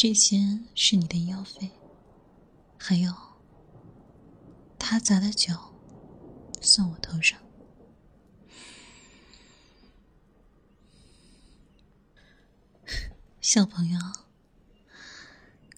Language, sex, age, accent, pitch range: Chinese, female, 20-39, native, 180-215 Hz